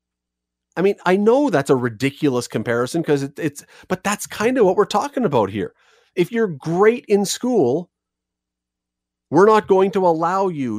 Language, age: English, 40-59